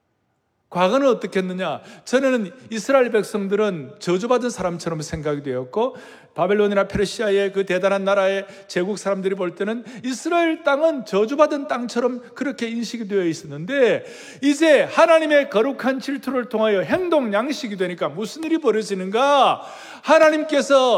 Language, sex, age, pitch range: Korean, male, 40-59, 200-285 Hz